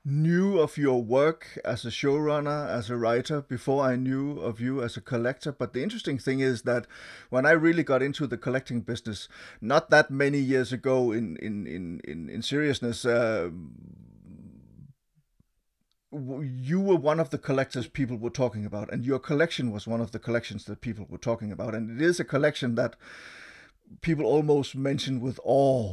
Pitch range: 120-145 Hz